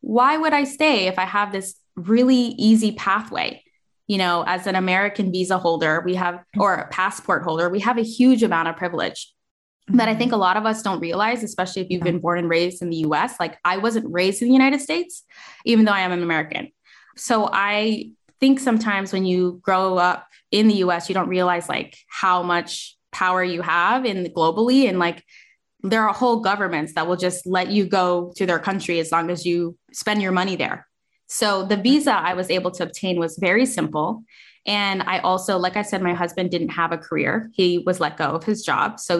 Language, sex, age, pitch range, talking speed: English, female, 10-29, 175-225 Hz, 220 wpm